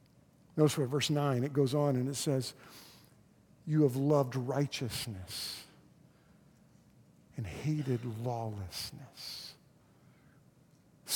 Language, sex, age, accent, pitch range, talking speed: English, male, 50-69, American, 135-170 Hz, 95 wpm